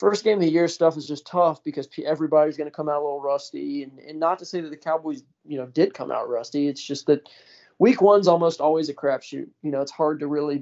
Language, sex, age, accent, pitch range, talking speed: English, male, 20-39, American, 140-160 Hz, 265 wpm